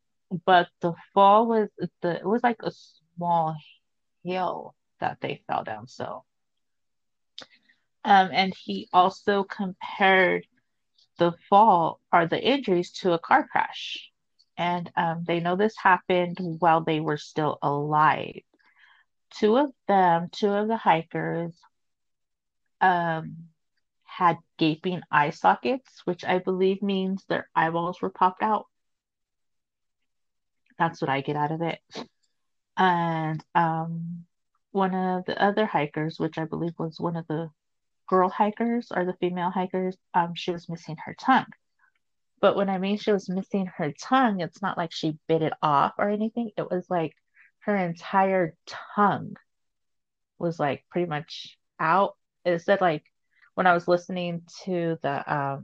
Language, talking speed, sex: English, 145 wpm, female